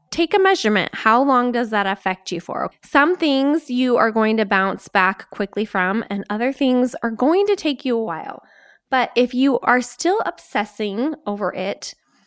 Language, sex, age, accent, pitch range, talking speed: English, female, 20-39, American, 205-280 Hz, 185 wpm